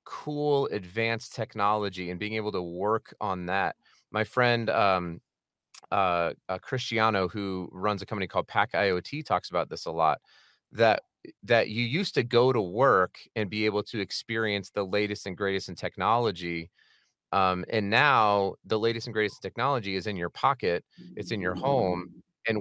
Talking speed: 170 wpm